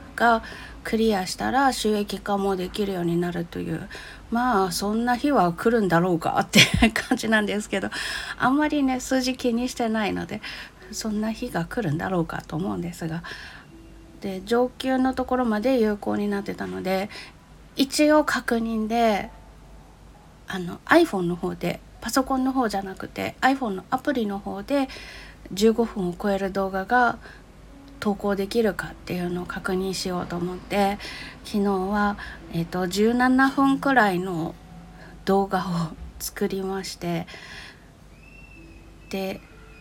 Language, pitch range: Japanese, 180-235 Hz